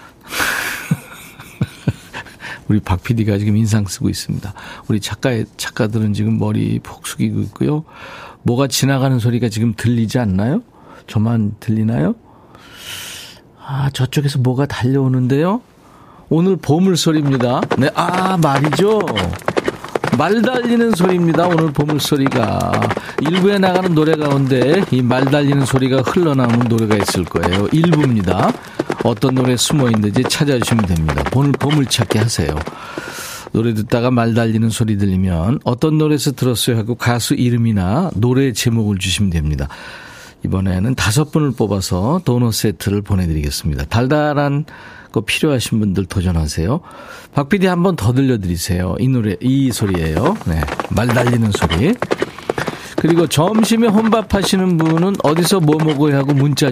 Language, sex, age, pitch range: Korean, male, 40-59, 105-150 Hz